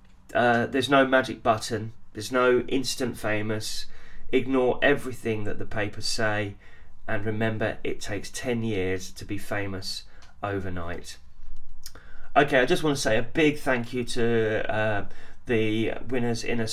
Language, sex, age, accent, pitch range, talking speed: English, male, 20-39, British, 100-120 Hz, 145 wpm